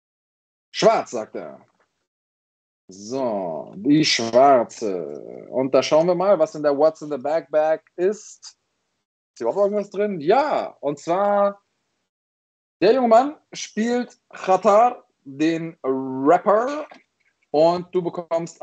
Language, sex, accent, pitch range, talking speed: German, male, German, 135-185 Hz, 120 wpm